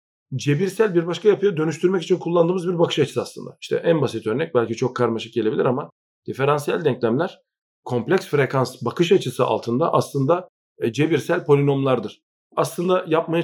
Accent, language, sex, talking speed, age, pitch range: native, Turkish, male, 145 wpm, 40-59, 125-175 Hz